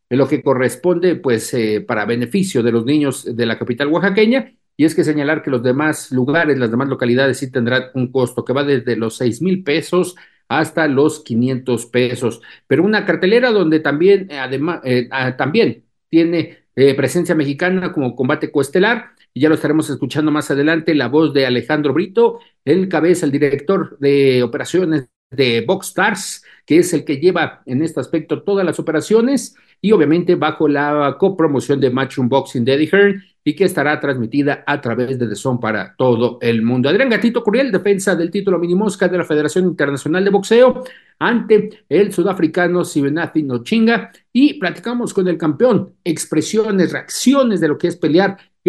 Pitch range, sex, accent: 135-185 Hz, male, Mexican